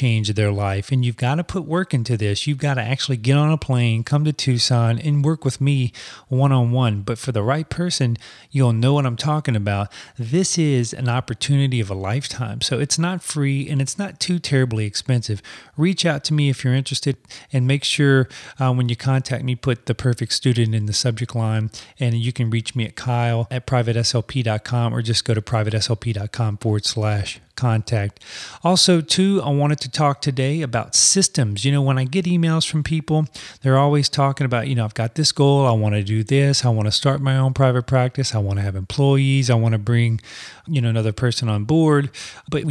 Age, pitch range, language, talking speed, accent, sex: 40-59, 115-150 Hz, English, 215 wpm, American, male